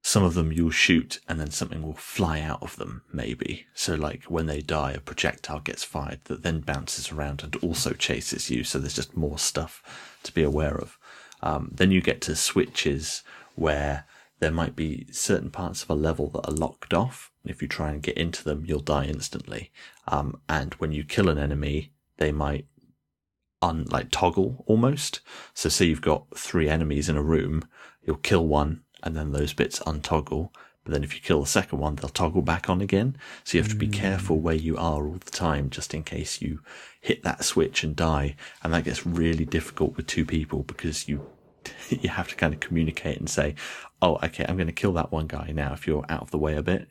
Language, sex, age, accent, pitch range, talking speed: English, male, 30-49, British, 75-85 Hz, 220 wpm